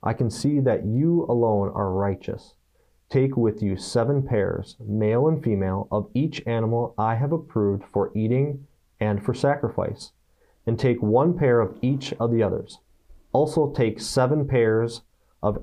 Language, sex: English, male